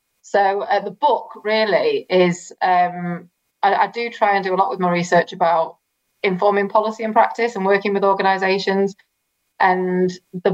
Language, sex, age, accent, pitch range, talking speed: English, female, 20-39, British, 180-200 Hz, 165 wpm